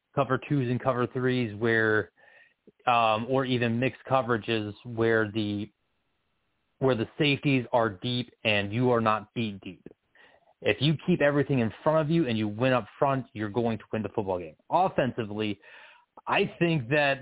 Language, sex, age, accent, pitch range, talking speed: English, male, 30-49, American, 115-140 Hz, 165 wpm